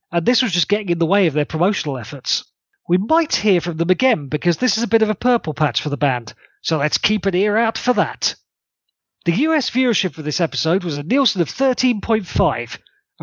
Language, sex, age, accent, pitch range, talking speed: English, male, 30-49, British, 160-230 Hz, 220 wpm